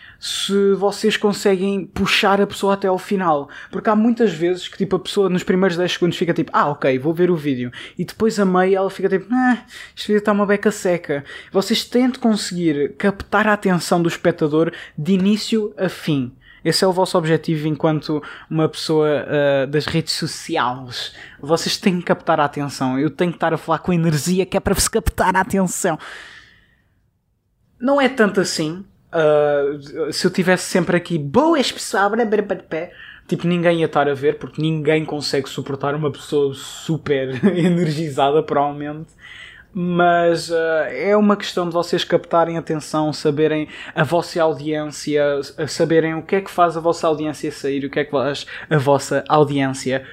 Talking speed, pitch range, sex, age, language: 170 wpm, 145-190 Hz, male, 20-39, Portuguese